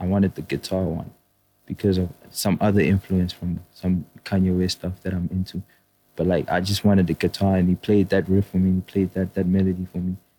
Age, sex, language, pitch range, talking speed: 20-39, male, English, 95-105 Hz, 225 wpm